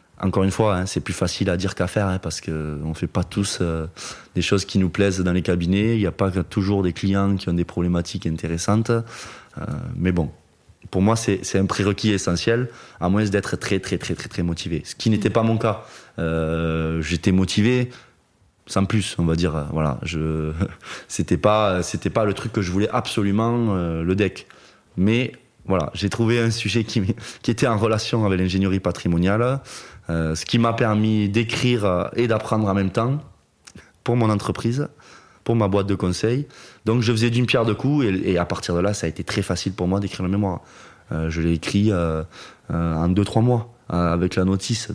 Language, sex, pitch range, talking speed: French, male, 85-105 Hz, 210 wpm